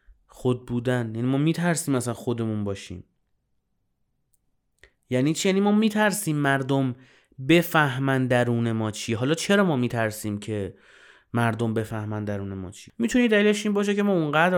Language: Persian